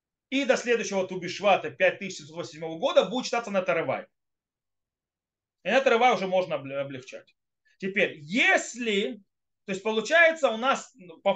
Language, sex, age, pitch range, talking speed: Russian, male, 30-49, 185-260 Hz, 120 wpm